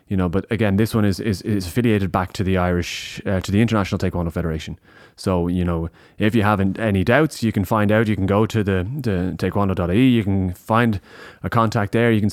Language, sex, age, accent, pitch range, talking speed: English, male, 20-39, Irish, 95-110 Hz, 230 wpm